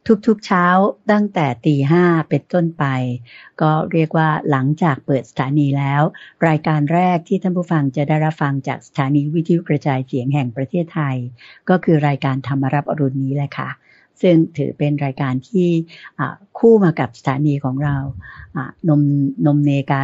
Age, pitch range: 60-79, 135-165 Hz